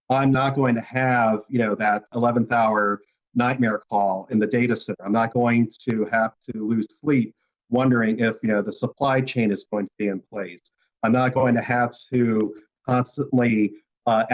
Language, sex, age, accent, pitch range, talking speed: English, male, 40-59, American, 115-135 Hz, 190 wpm